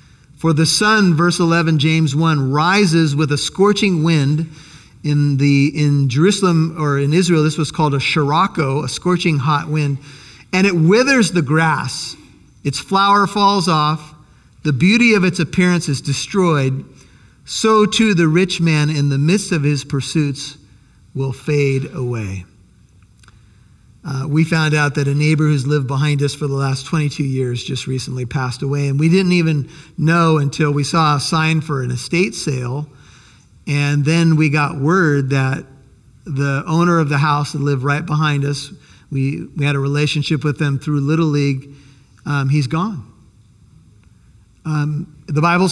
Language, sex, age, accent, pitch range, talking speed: English, male, 50-69, American, 140-170 Hz, 165 wpm